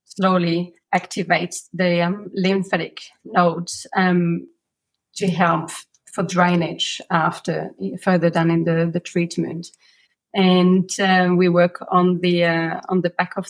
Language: English